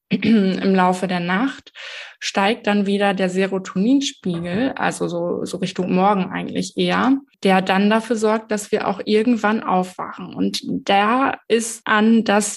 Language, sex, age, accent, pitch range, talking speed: German, female, 20-39, German, 190-225 Hz, 145 wpm